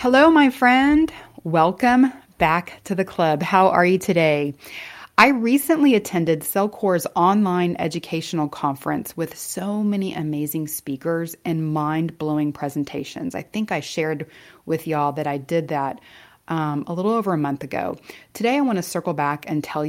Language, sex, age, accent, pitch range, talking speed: English, female, 30-49, American, 155-195 Hz, 155 wpm